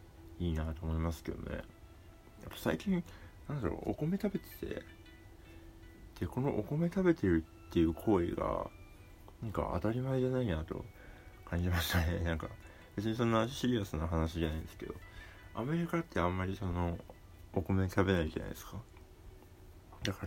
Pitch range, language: 85-105 Hz, Japanese